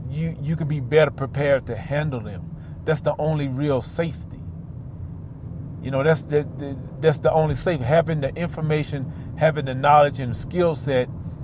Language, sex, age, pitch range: English, male, 40-59, 130-170 Hz